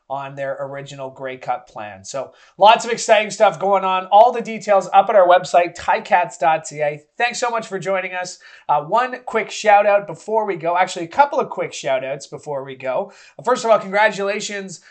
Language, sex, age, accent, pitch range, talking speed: English, male, 30-49, American, 145-190 Hz, 195 wpm